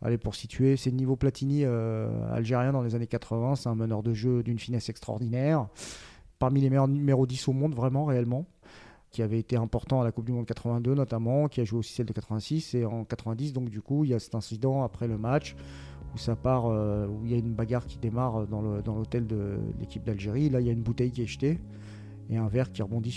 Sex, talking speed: male, 245 wpm